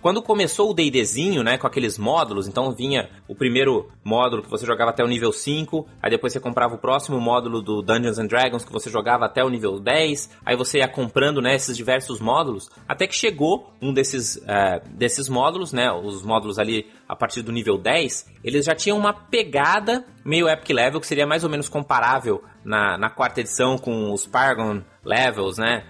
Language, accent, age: Portuguese, Brazilian, 20-39